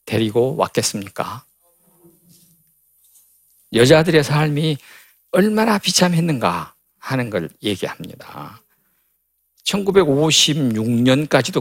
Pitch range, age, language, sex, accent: 95-160 Hz, 50-69, Korean, male, native